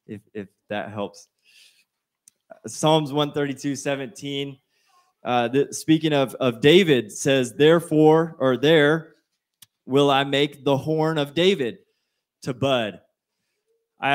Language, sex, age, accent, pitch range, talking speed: English, male, 20-39, American, 130-155 Hz, 120 wpm